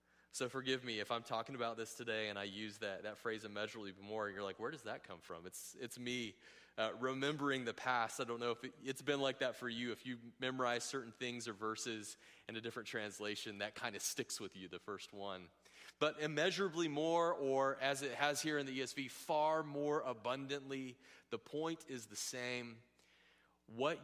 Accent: American